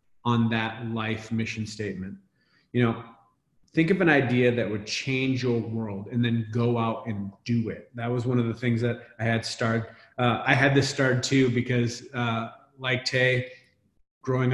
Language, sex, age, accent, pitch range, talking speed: English, male, 30-49, American, 120-135 Hz, 180 wpm